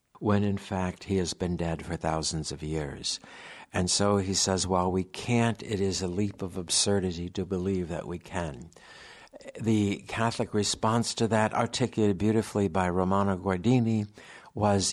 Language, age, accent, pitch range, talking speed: English, 60-79, American, 90-105 Hz, 160 wpm